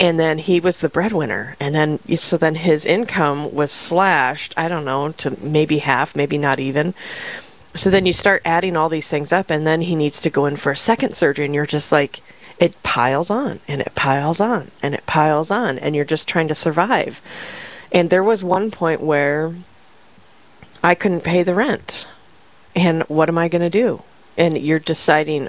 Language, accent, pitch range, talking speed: English, American, 145-175 Hz, 200 wpm